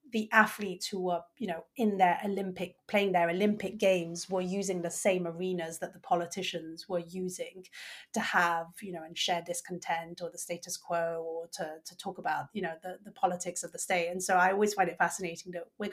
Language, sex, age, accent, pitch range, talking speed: English, female, 30-49, British, 170-190 Hz, 210 wpm